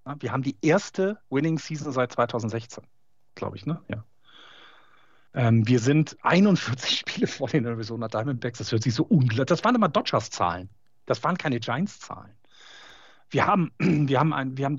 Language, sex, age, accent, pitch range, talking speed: German, male, 40-59, German, 125-170 Hz, 145 wpm